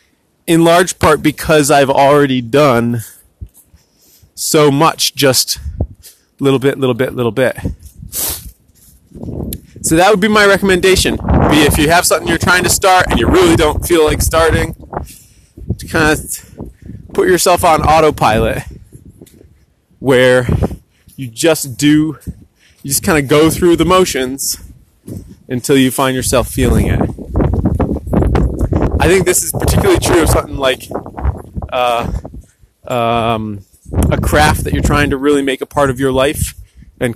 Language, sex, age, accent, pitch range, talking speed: English, male, 20-39, American, 115-150 Hz, 140 wpm